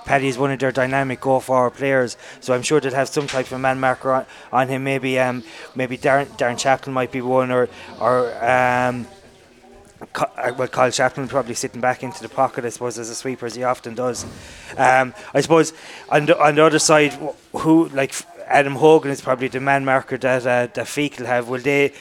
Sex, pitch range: male, 125-140 Hz